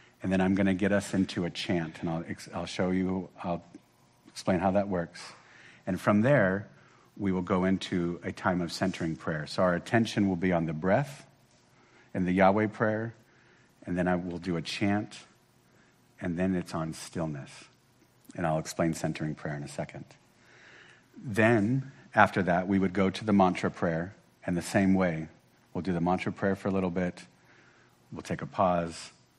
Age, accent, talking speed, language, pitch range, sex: 50-69, American, 185 wpm, English, 85-105 Hz, male